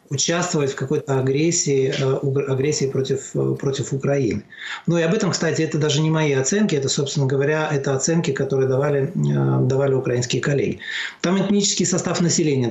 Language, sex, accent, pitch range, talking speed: Russian, male, native, 135-155 Hz, 150 wpm